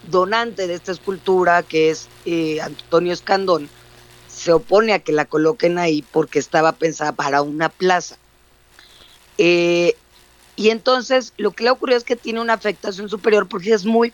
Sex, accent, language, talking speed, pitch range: female, Mexican, Spanish, 160 wpm, 155-195 Hz